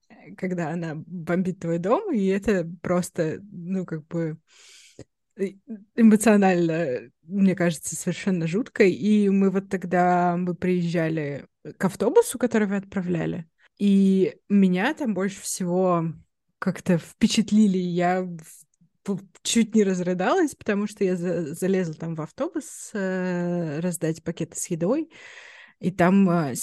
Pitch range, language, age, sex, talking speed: 175-205 Hz, Russian, 20-39, female, 115 wpm